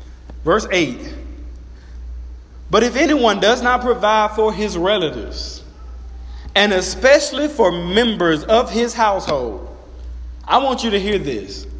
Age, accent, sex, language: 40-59, American, male, English